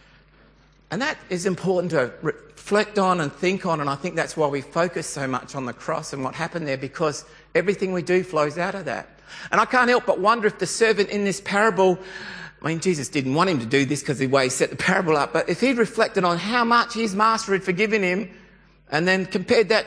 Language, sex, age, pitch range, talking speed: English, male, 50-69, 135-185 Hz, 240 wpm